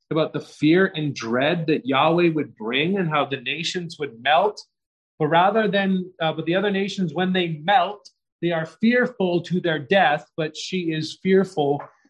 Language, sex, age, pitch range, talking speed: English, male, 30-49, 135-180 Hz, 180 wpm